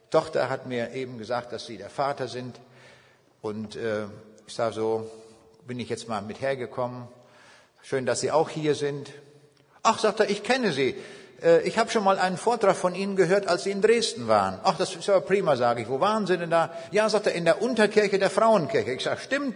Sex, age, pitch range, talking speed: male, 60-79, 120-190 Hz, 215 wpm